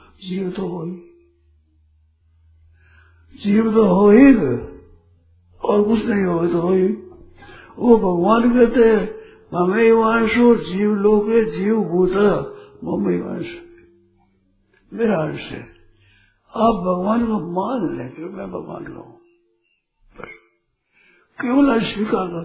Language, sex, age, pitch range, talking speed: Hindi, male, 60-79, 155-230 Hz, 95 wpm